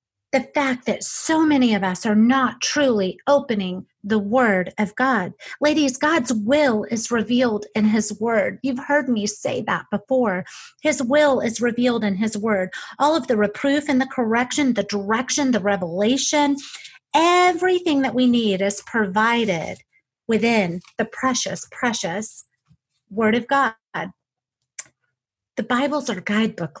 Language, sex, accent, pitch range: English, female, American, 205-265 Hz